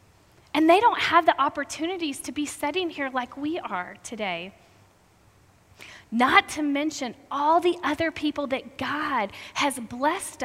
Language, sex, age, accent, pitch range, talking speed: English, female, 30-49, American, 205-285 Hz, 145 wpm